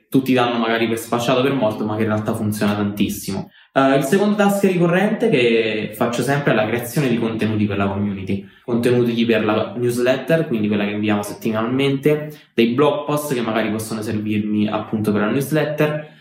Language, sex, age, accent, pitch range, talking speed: Italian, male, 20-39, native, 110-135 Hz, 180 wpm